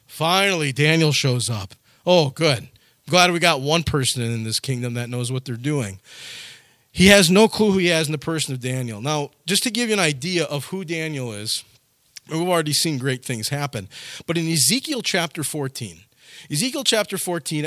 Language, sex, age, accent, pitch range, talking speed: English, male, 40-59, American, 125-170 Hz, 190 wpm